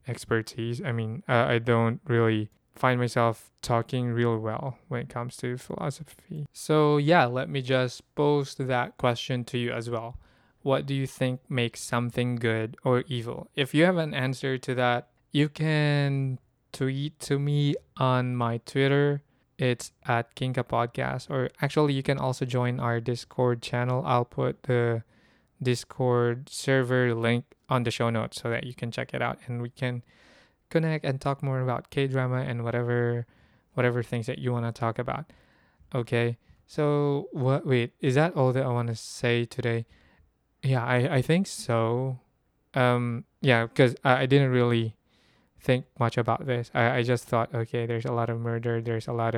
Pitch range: 120-135 Hz